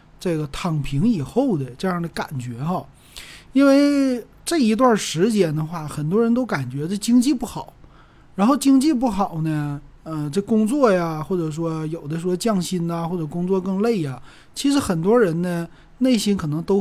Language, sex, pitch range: Chinese, male, 150-210 Hz